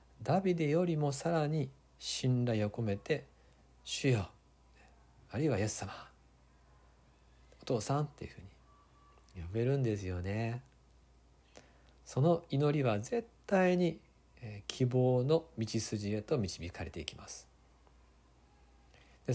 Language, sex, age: Japanese, male, 50-69